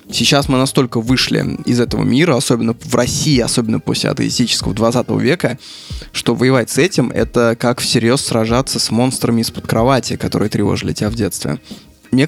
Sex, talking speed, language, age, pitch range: male, 165 wpm, Russian, 20-39, 115-135 Hz